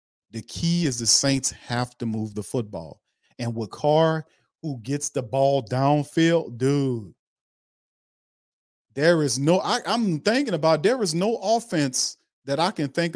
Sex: male